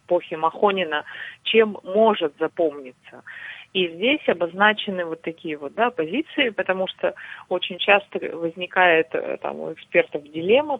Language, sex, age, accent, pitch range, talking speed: Russian, female, 30-49, native, 160-190 Hz, 120 wpm